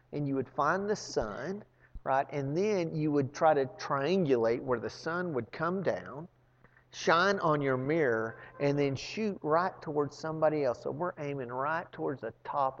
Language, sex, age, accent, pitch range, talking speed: English, male, 40-59, American, 120-150 Hz, 180 wpm